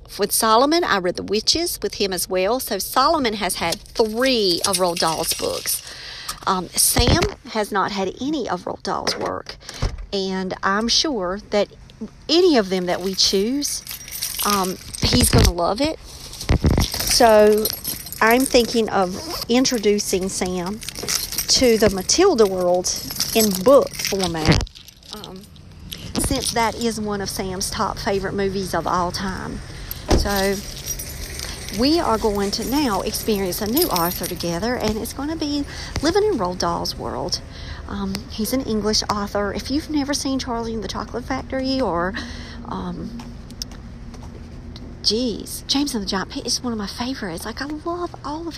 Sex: female